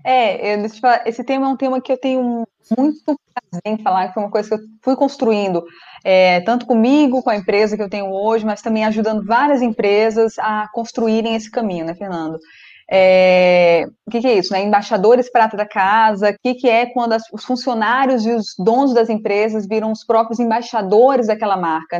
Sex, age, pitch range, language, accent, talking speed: female, 20-39, 210-250 Hz, Portuguese, Brazilian, 185 wpm